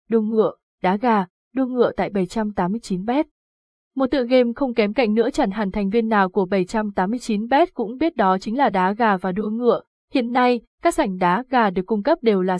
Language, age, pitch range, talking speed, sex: Vietnamese, 20-39, 190-245 Hz, 205 wpm, female